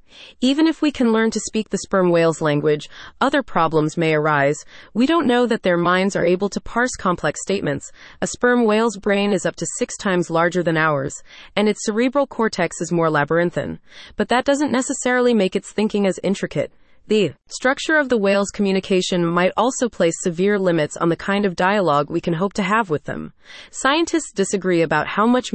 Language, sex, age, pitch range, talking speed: English, female, 30-49, 170-230 Hz, 195 wpm